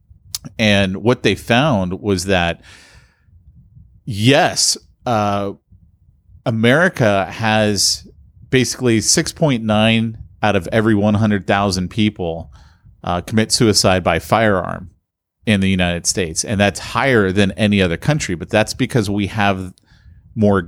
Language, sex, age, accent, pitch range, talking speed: English, male, 40-59, American, 95-110 Hz, 115 wpm